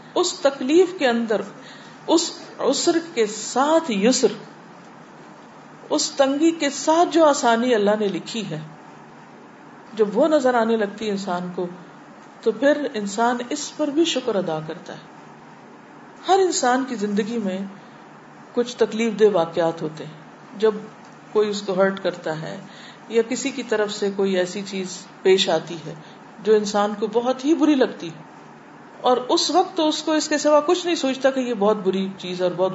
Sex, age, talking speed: female, 50-69, 170 wpm